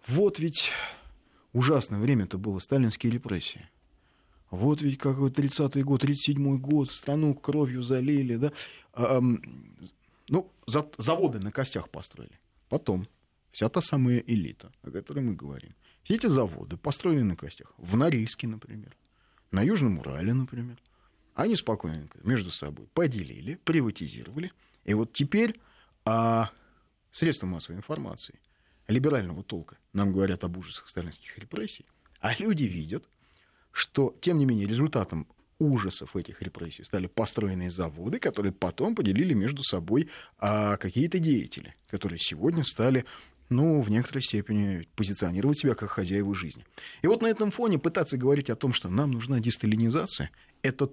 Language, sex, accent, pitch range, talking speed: Russian, male, native, 95-140 Hz, 135 wpm